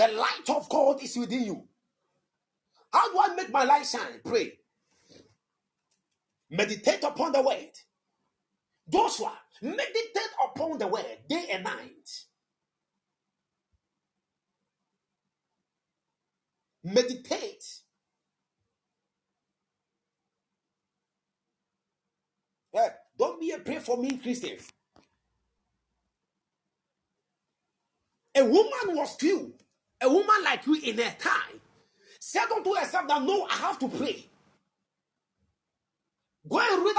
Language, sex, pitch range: Japanese, male, 260-405 Hz